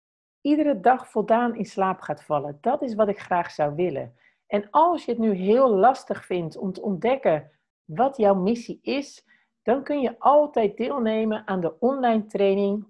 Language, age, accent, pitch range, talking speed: Dutch, 50-69, Dutch, 175-235 Hz, 175 wpm